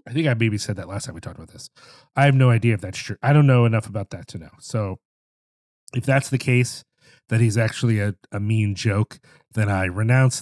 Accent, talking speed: American, 240 wpm